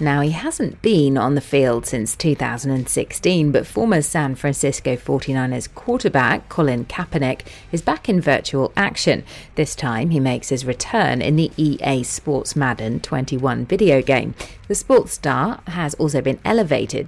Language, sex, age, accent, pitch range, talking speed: English, female, 30-49, British, 125-165 Hz, 150 wpm